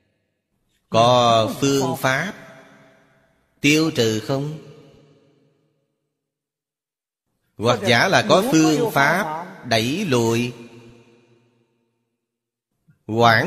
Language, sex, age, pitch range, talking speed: Vietnamese, male, 30-49, 110-135 Hz, 65 wpm